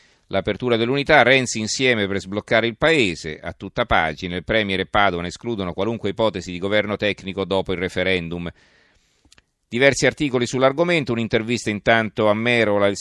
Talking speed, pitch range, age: 150 wpm, 95-120 Hz, 40-59